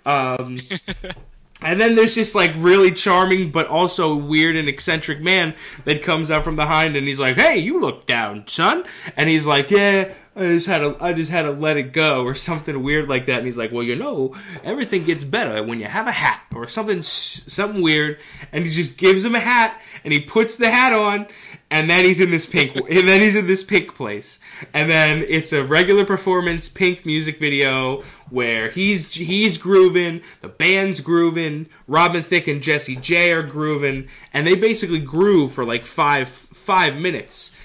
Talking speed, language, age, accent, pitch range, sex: 195 wpm, English, 20-39, American, 140-185 Hz, male